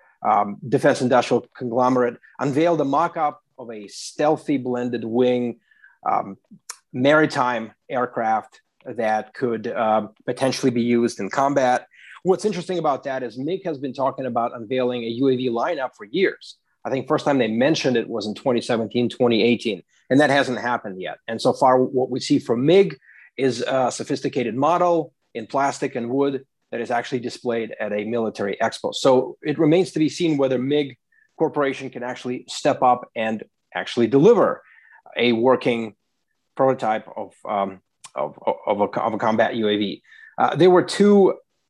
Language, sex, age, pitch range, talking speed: English, male, 30-49, 120-145 Hz, 160 wpm